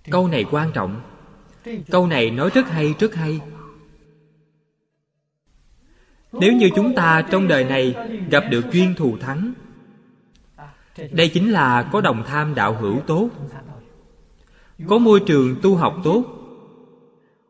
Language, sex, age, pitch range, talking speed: Vietnamese, male, 20-39, 135-180 Hz, 130 wpm